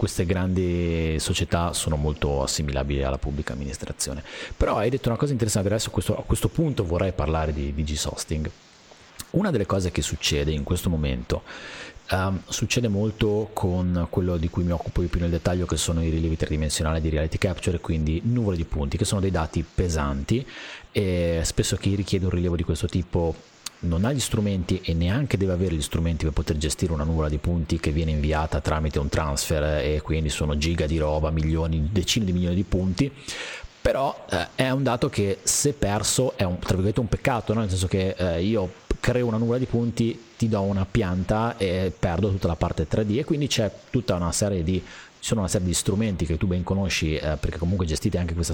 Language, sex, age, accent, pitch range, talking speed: Italian, male, 30-49, native, 80-110 Hz, 200 wpm